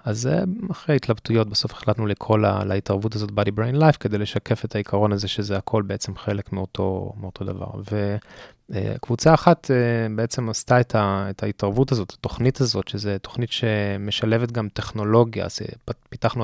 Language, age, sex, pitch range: Hebrew, 20-39, male, 105-125 Hz